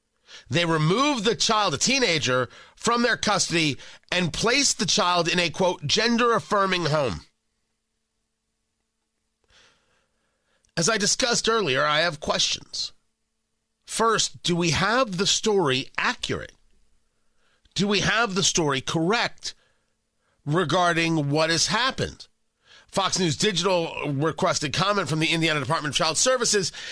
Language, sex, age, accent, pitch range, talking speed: English, male, 40-59, American, 145-200 Hz, 125 wpm